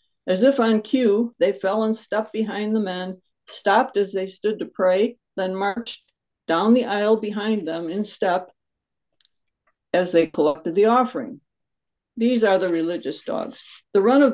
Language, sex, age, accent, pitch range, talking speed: English, female, 60-79, American, 185-230 Hz, 165 wpm